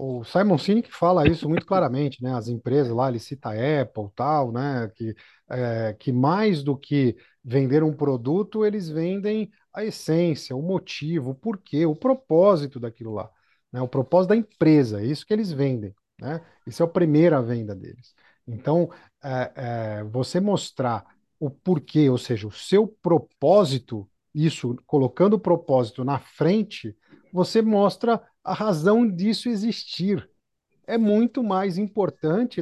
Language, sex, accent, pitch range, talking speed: Portuguese, male, Brazilian, 135-190 Hz, 155 wpm